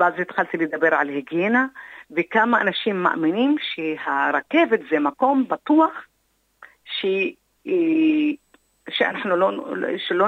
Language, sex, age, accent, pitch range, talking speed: Hebrew, female, 50-69, native, 155-255 Hz, 95 wpm